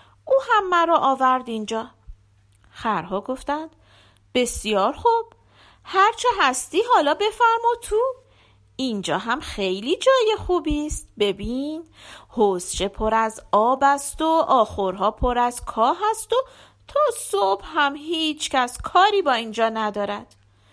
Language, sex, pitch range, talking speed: Persian, female, 220-370 Hz, 120 wpm